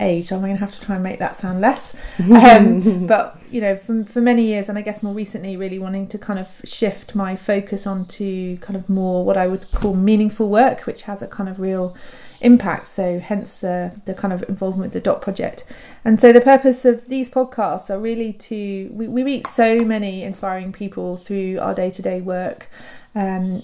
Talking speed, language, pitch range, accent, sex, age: 215 wpm, English, 185-220 Hz, British, female, 30-49